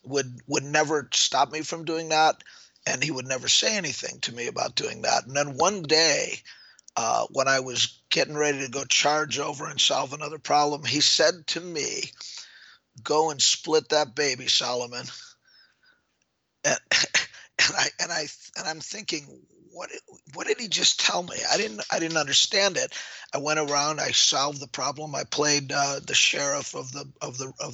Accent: American